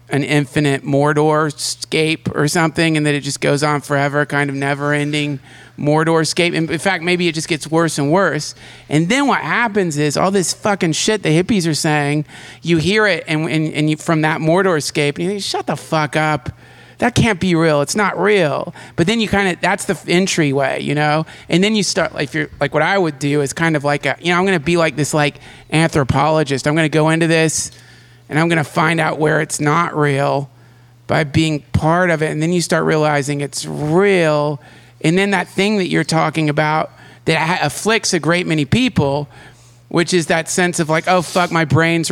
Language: English